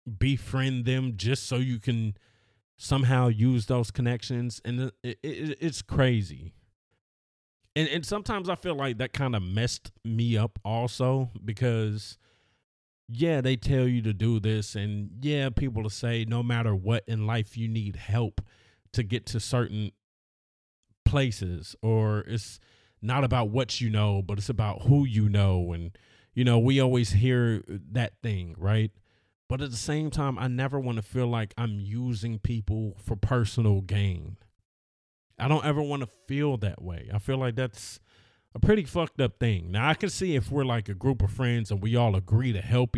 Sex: male